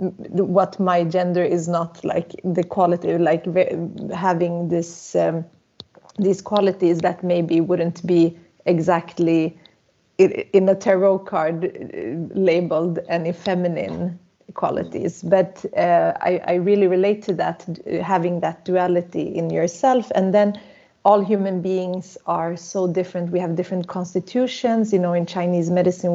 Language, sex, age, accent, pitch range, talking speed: English, female, 30-49, Swedish, 175-195 Hz, 130 wpm